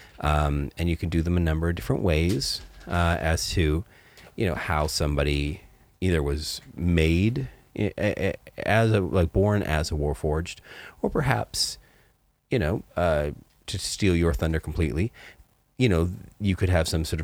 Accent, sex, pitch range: American, male, 75-100 Hz